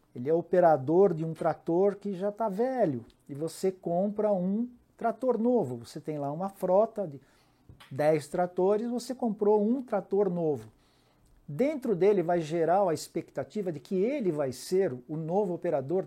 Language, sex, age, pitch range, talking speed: Portuguese, male, 60-79, 150-200 Hz, 160 wpm